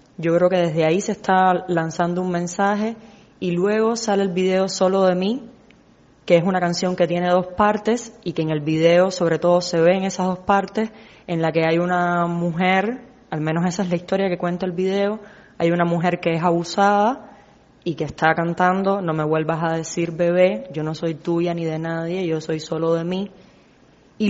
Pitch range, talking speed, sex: 170-195 Hz, 205 wpm, female